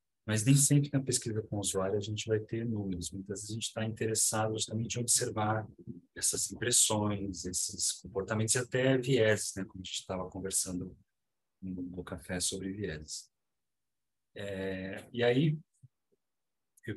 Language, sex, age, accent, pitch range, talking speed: Portuguese, male, 40-59, Brazilian, 95-115 Hz, 150 wpm